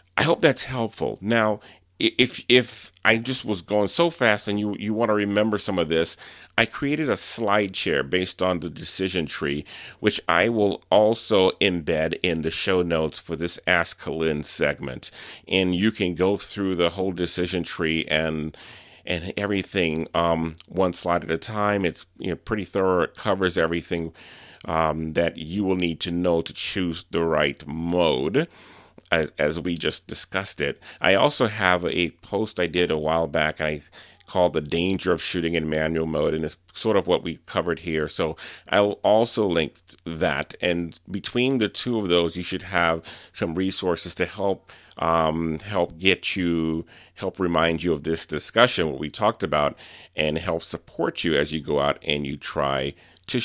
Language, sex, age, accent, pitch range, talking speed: English, male, 40-59, American, 80-100 Hz, 180 wpm